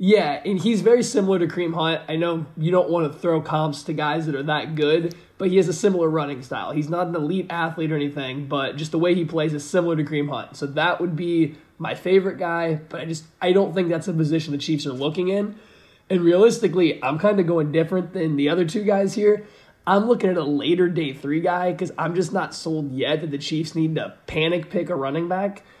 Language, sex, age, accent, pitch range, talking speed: English, male, 20-39, American, 150-180 Hz, 245 wpm